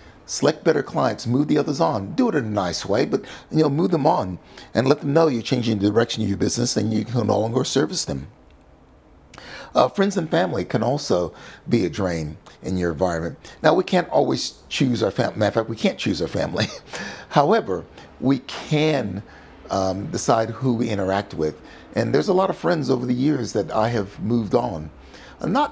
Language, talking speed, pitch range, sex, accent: English, 210 wpm, 100-145 Hz, male, American